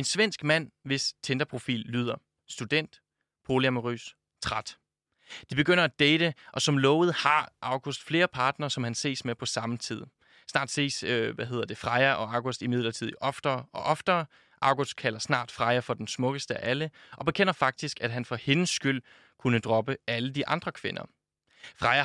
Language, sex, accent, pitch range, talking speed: Danish, male, native, 125-150 Hz, 175 wpm